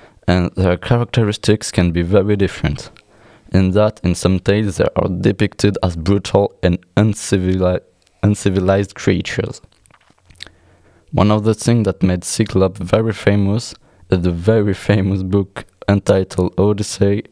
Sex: male